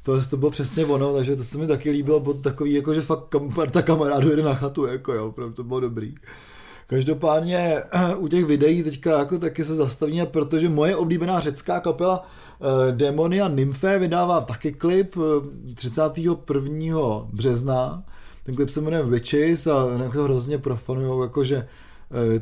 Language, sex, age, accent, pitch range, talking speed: Czech, male, 20-39, native, 125-145 Hz, 160 wpm